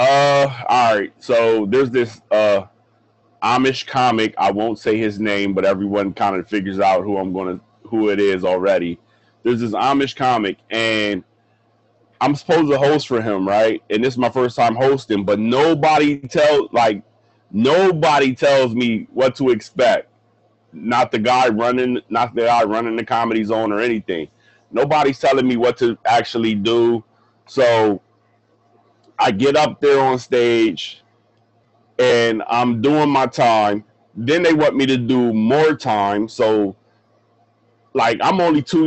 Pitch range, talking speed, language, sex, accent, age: 110-135 Hz, 155 wpm, English, male, American, 30-49